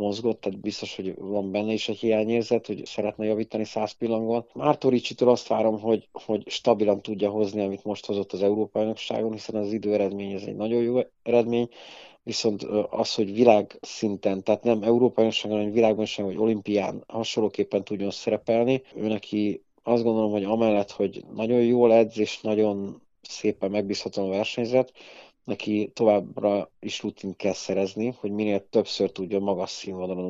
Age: 40-59